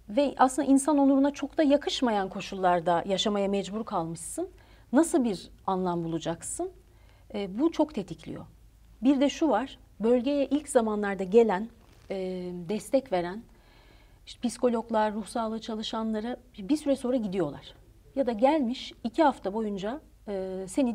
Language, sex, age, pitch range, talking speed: Turkish, female, 40-59, 190-260 Hz, 130 wpm